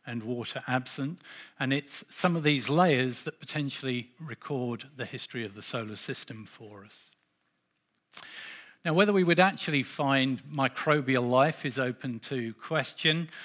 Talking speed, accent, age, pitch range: 145 wpm, British, 50-69, 120-150 Hz